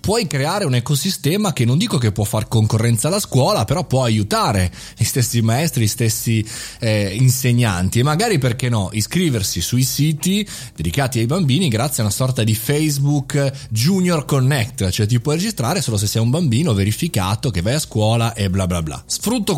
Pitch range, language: 110-150 Hz, Italian